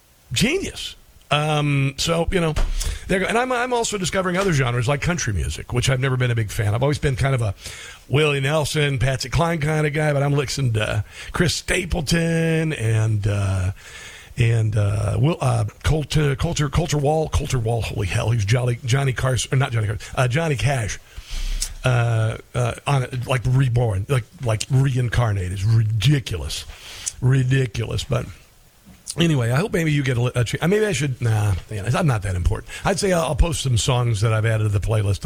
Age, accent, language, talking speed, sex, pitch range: 50-69, American, English, 185 wpm, male, 110-145 Hz